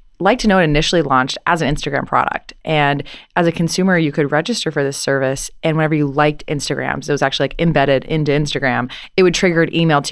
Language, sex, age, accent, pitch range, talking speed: English, female, 20-39, American, 140-165 Hz, 230 wpm